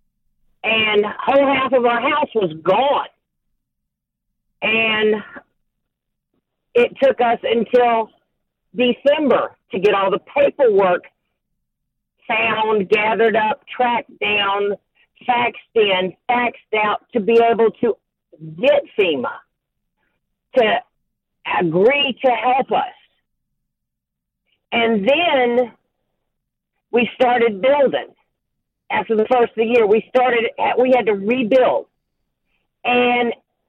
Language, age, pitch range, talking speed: English, 50-69, 220-265 Hz, 100 wpm